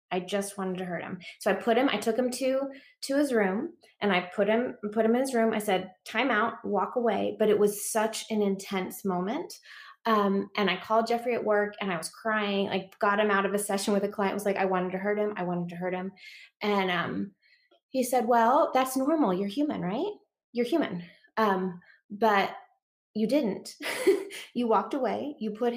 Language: English